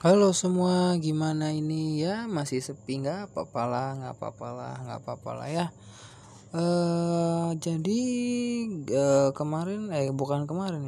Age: 20-39